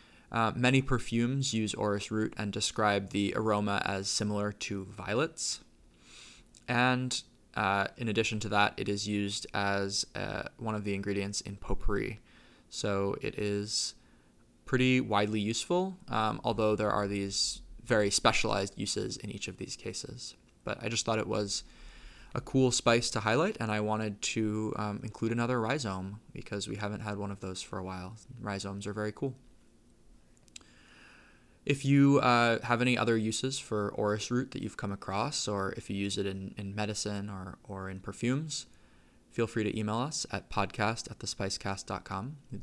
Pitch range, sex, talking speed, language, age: 100-115 Hz, male, 165 wpm, English, 20-39